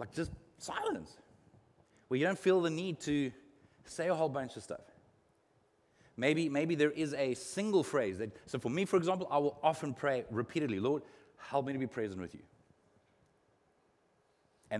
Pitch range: 125-165 Hz